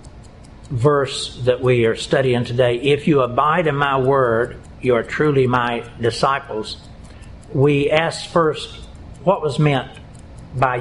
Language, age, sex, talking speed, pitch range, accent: English, 60-79, male, 135 wpm, 125-150 Hz, American